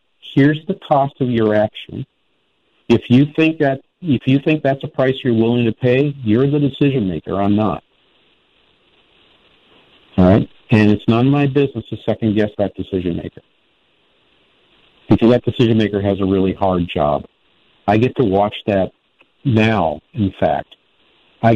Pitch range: 100-125 Hz